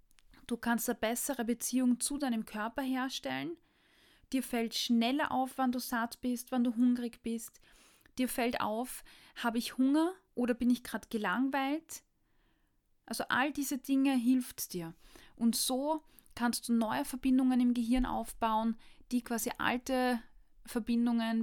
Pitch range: 225-260 Hz